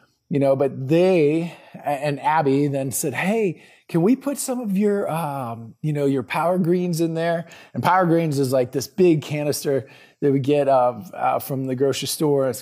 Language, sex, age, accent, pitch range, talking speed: English, male, 30-49, American, 130-165 Hz, 195 wpm